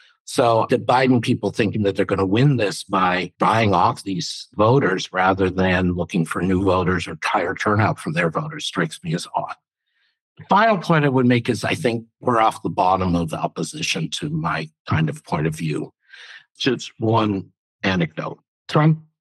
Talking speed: 185 wpm